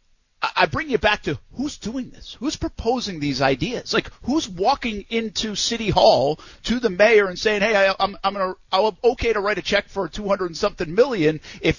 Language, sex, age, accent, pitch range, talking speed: English, male, 50-69, American, 180-240 Hz, 205 wpm